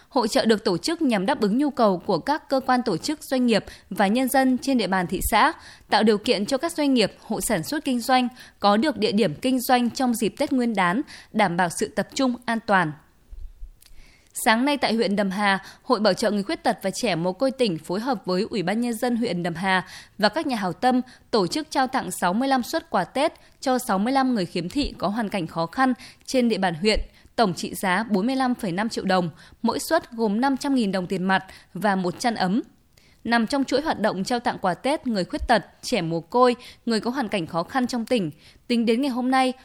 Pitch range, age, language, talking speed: 195-260 Hz, 20-39, Vietnamese, 235 wpm